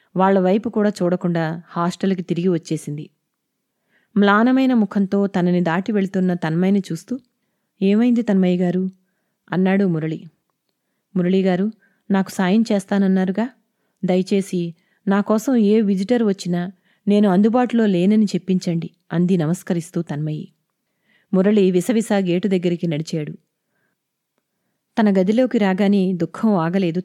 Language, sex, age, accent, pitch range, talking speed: Telugu, female, 30-49, native, 180-220 Hz, 100 wpm